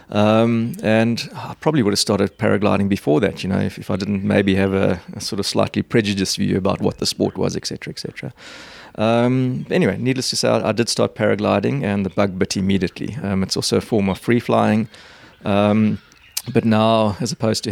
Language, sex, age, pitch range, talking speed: English, male, 30-49, 100-110 Hz, 215 wpm